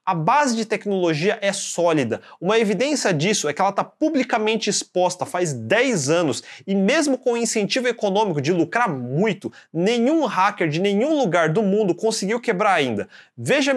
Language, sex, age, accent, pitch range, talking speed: Portuguese, male, 30-49, Brazilian, 180-240 Hz, 165 wpm